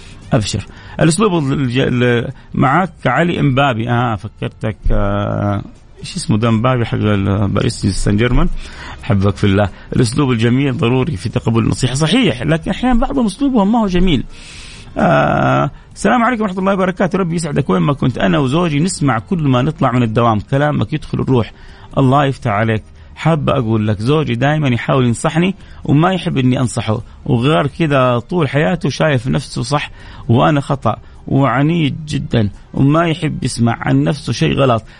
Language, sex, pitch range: Arabic, male, 115-165 Hz